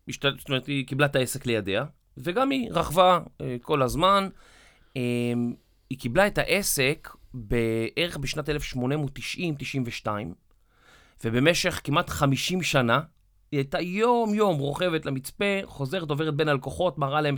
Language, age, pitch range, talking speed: Hebrew, 30-49, 120-160 Hz, 120 wpm